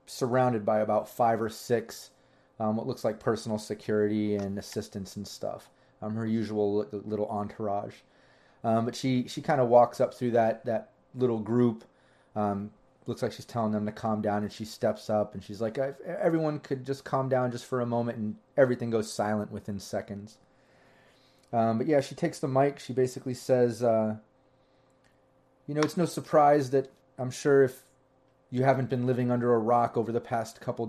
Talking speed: 185 wpm